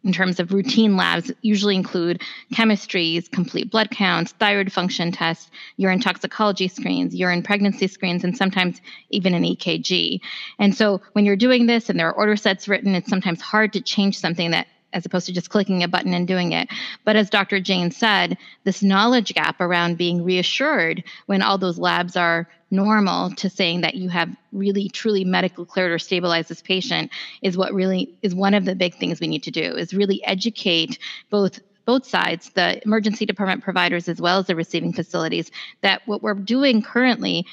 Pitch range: 180-205 Hz